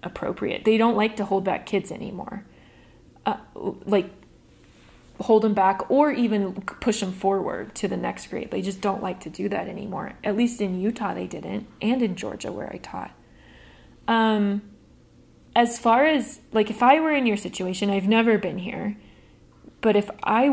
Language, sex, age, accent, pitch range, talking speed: English, female, 20-39, American, 195-230 Hz, 180 wpm